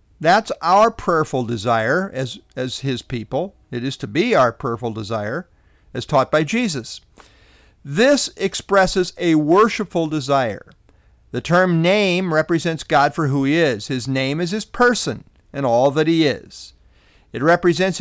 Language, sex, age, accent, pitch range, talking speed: English, male, 50-69, American, 130-190 Hz, 150 wpm